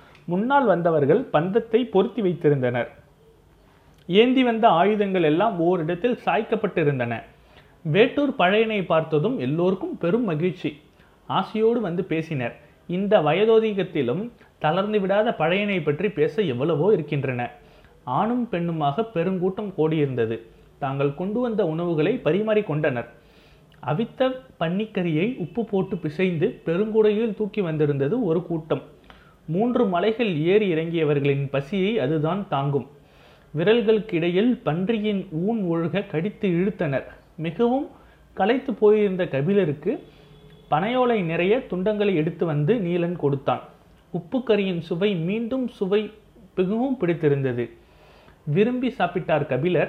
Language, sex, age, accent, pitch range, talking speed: Tamil, male, 30-49, native, 150-215 Hz, 100 wpm